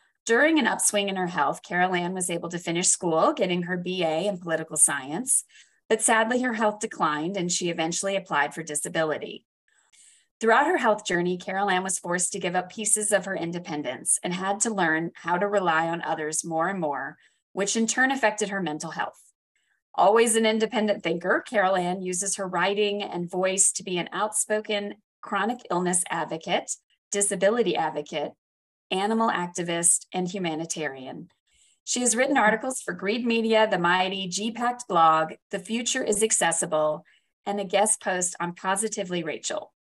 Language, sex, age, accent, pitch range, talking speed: English, female, 30-49, American, 175-220 Hz, 165 wpm